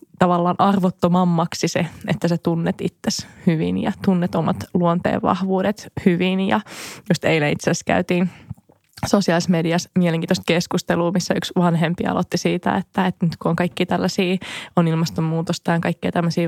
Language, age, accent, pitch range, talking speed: Finnish, 20-39, native, 165-185 Hz, 145 wpm